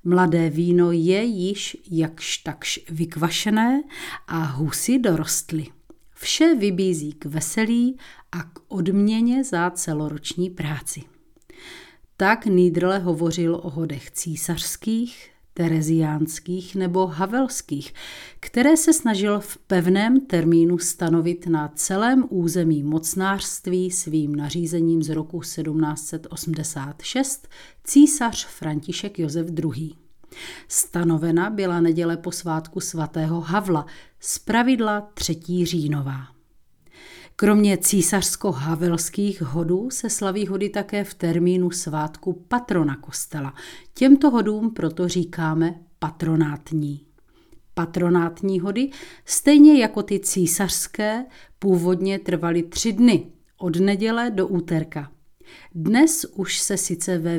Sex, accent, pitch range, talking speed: female, native, 165-210 Hz, 100 wpm